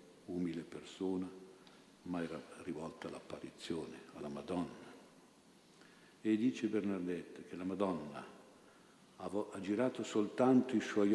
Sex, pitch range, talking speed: male, 85-100 Hz, 100 wpm